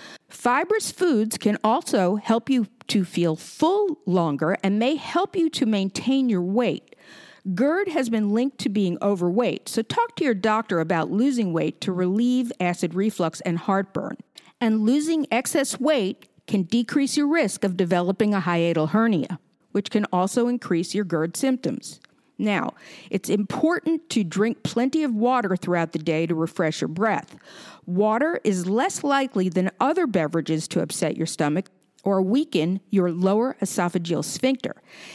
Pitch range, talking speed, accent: 180-260 Hz, 155 wpm, American